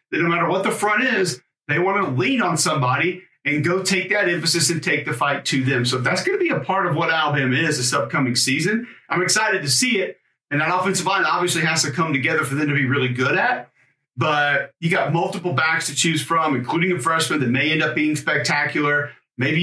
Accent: American